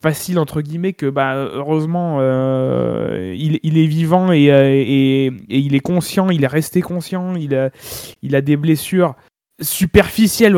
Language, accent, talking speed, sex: French, French, 160 wpm, male